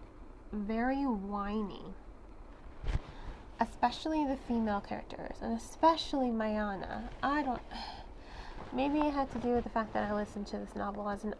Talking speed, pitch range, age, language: 140 wpm, 205-255 Hz, 20-39, English